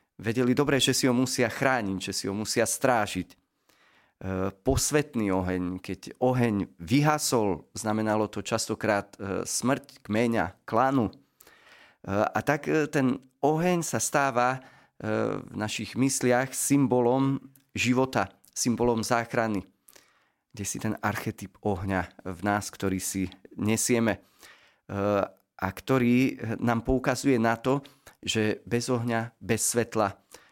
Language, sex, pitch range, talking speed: Slovak, male, 105-130 Hz, 110 wpm